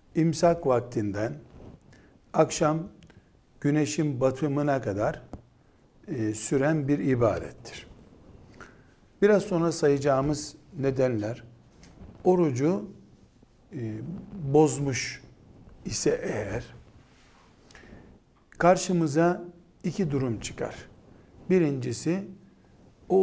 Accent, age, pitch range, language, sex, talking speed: native, 60-79, 120-170 Hz, Turkish, male, 65 wpm